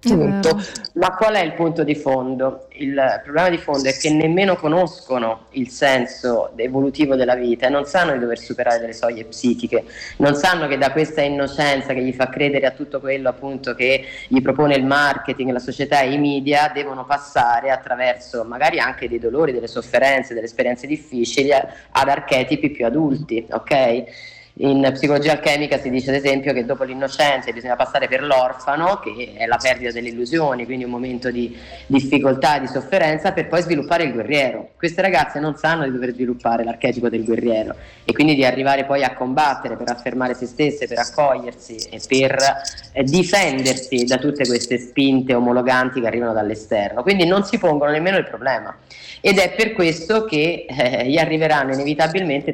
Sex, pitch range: female, 125-150 Hz